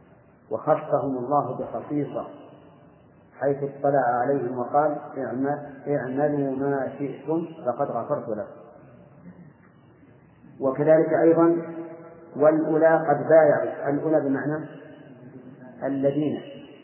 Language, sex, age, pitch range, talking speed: Arabic, male, 40-59, 130-160 Hz, 75 wpm